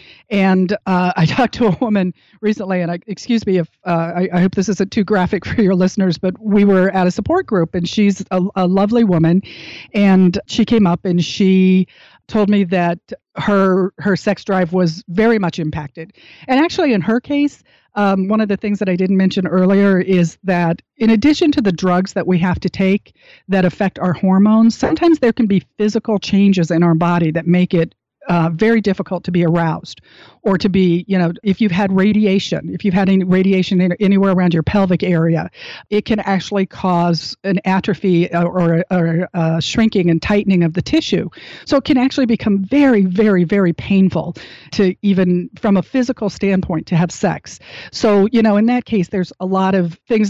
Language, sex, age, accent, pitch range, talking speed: English, female, 40-59, American, 180-205 Hz, 200 wpm